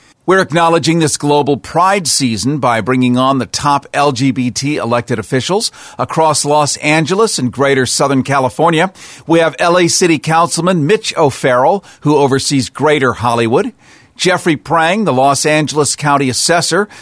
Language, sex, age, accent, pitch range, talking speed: English, male, 50-69, American, 135-175 Hz, 140 wpm